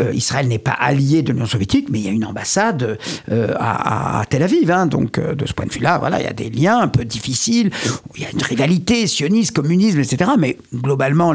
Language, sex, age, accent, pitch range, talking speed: French, male, 50-69, French, 125-170 Hz, 245 wpm